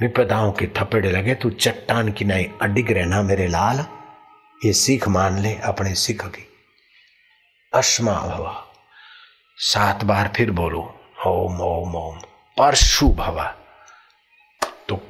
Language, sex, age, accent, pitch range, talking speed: Hindi, male, 60-79, native, 90-115 Hz, 125 wpm